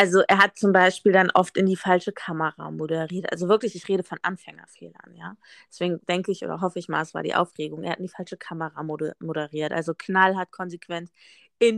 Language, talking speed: German, 215 wpm